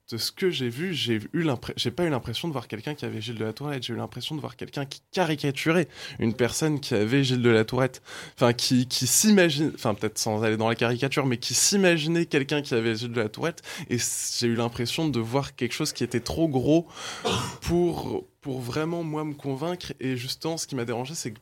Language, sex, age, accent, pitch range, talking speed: French, male, 20-39, French, 115-150 Hz, 235 wpm